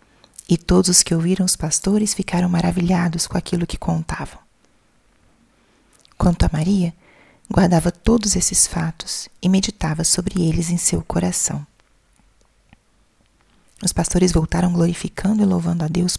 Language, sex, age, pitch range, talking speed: Portuguese, female, 30-49, 165-185 Hz, 130 wpm